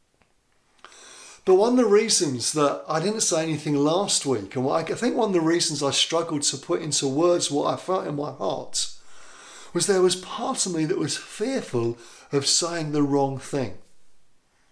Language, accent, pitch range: English, British, 140-180 Hz